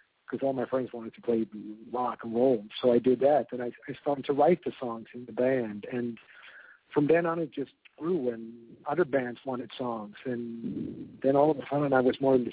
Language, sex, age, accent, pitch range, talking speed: English, male, 50-69, American, 120-145 Hz, 230 wpm